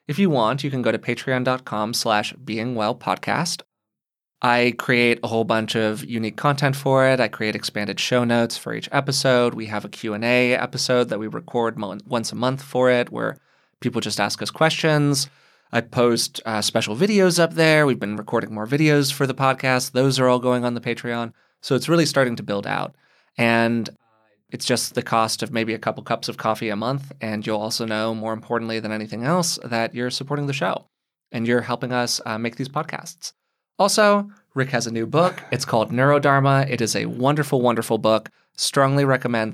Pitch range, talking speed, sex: 110-135 Hz, 195 wpm, male